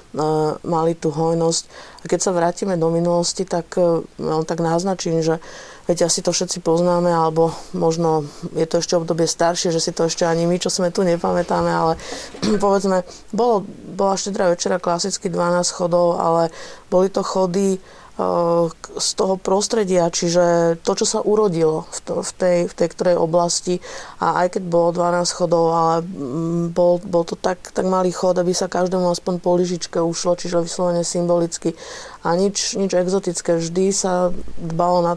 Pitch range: 165-180 Hz